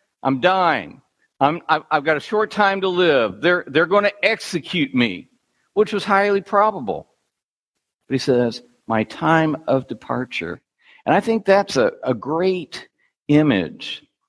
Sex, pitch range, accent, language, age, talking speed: male, 115-185 Hz, American, English, 60-79, 145 wpm